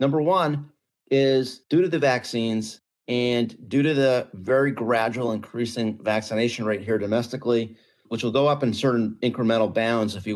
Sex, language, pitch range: male, English, 105-130 Hz